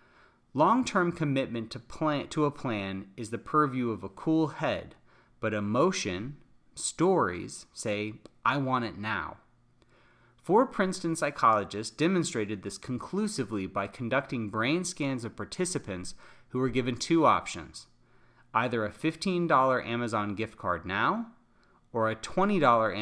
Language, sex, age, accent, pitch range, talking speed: English, male, 30-49, American, 105-150 Hz, 125 wpm